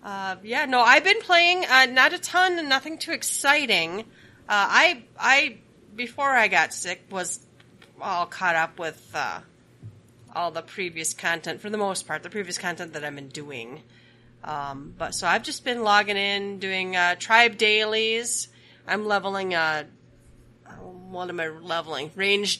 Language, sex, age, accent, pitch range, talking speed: English, female, 30-49, American, 155-215 Hz, 165 wpm